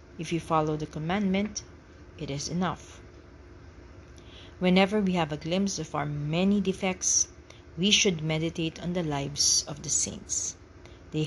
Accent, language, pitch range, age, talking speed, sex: Filipino, English, 140-190 Hz, 40-59, 145 wpm, female